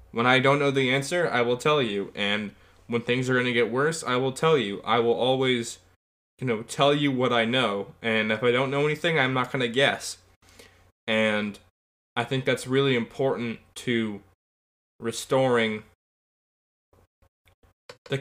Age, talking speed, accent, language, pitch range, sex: 10-29, 170 wpm, American, English, 100-125 Hz, male